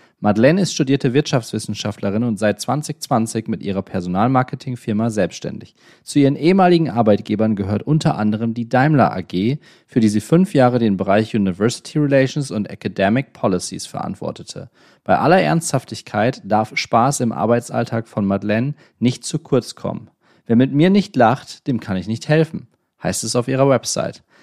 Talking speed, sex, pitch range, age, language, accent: 150 wpm, male, 110-145 Hz, 30-49, German, German